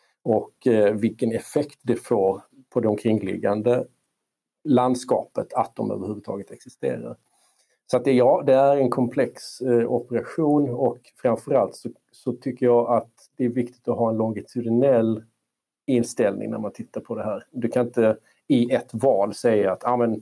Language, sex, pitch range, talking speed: Swedish, male, 110-125 Hz, 155 wpm